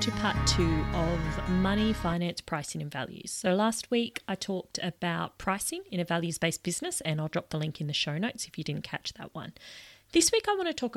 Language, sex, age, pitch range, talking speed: English, female, 30-49, 155-215 Hz, 230 wpm